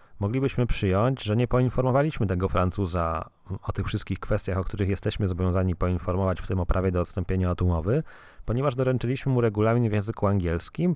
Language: Polish